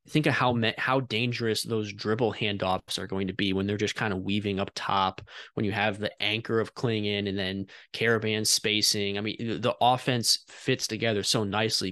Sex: male